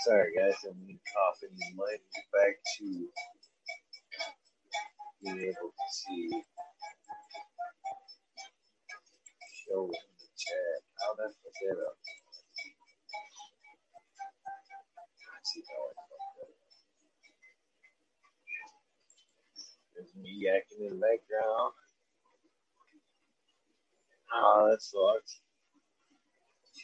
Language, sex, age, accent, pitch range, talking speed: English, male, 40-59, American, 285-465 Hz, 85 wpm